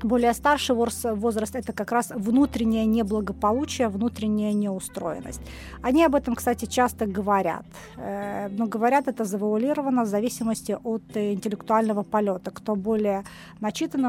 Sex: female